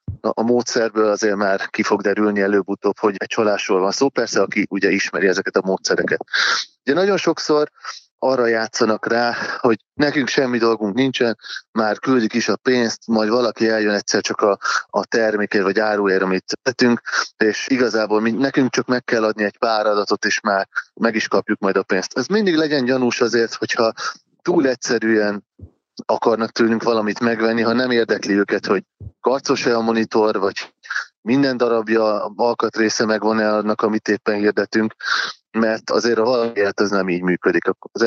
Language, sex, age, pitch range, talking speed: Hungarian, male, 30-49, 105-120 Hz, 165 wpm